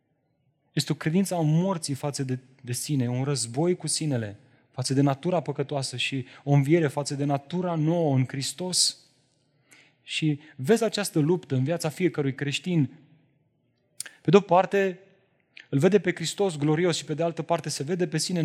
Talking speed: 165 wpm